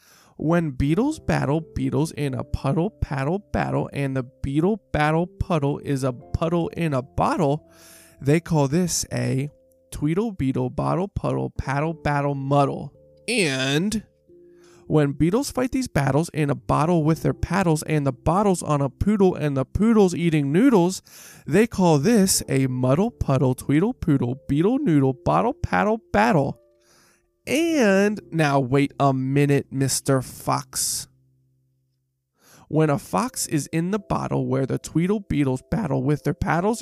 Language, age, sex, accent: English, 20-39, male, American